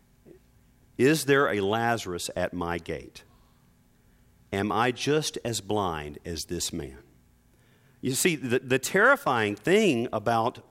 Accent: American